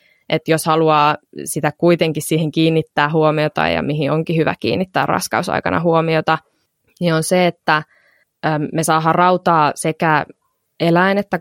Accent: native